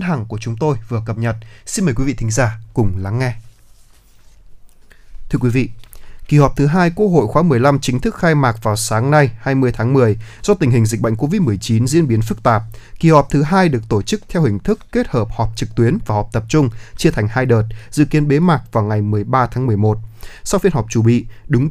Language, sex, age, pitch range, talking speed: Vietnamese, male, 20-39, 110-150 Hz, 235 wpm